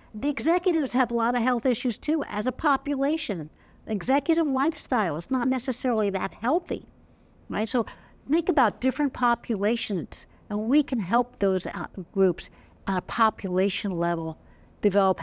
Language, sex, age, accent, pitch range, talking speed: English, female, 60-79, American, 175-245 Hz, 140 wpm